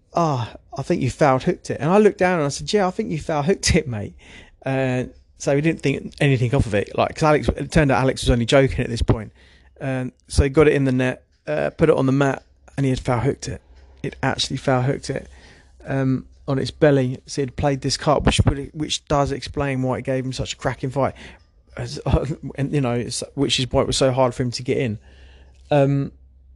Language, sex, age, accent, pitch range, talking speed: English, male, 30-49, British, 115-135 Hz, 245 wpm